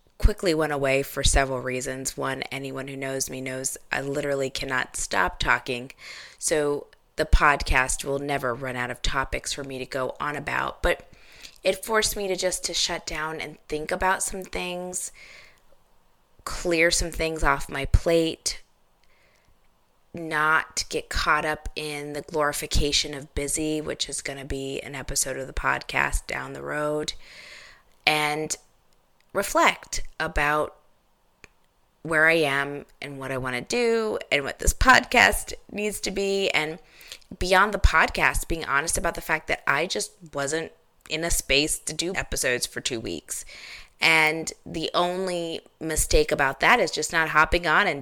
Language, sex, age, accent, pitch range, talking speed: English, female, 20-39, American, 140-170 Hz, 160 wpm